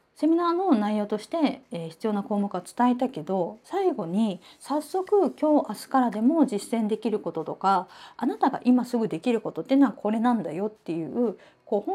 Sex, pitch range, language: female, 195-295 Hz, Japanese